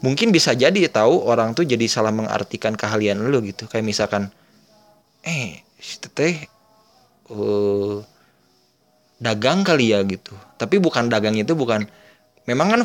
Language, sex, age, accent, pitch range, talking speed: English, male, 20-39, Indonesian, 105-135 Hz, 135 wpm